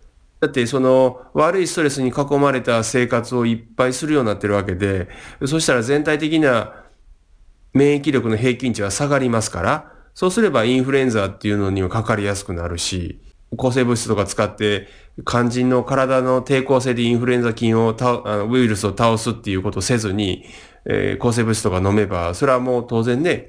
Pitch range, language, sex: 105-155 Hz, Japanese, male